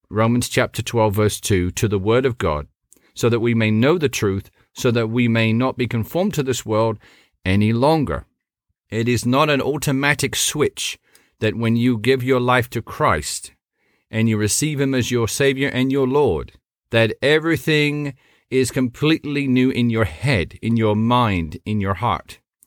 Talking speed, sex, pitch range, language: 175 wpm, male, 105-135 Hz, English